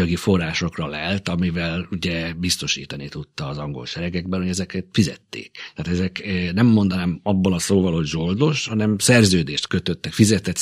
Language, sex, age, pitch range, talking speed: Hungarian, male, 50-69, 85-100 Hz, 145 wpm